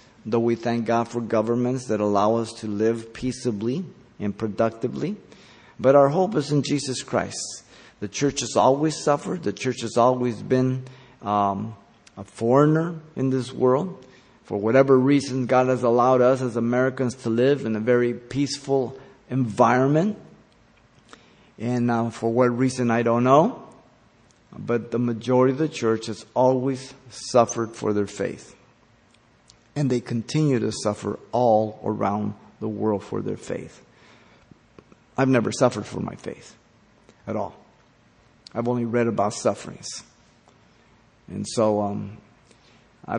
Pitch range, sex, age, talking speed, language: 110-130 Hz, male, 50-69, 140 wpm, English